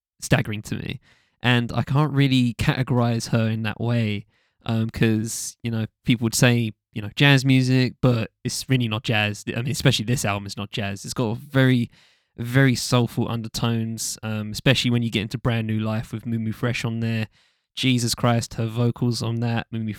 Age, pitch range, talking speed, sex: 10-29, 110-130 Hz, 190 wpm, male